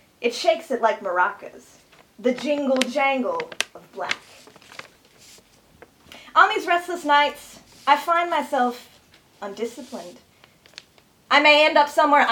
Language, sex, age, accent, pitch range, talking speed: English, female, 20-39, American, 215-285 Hz, 110 wpm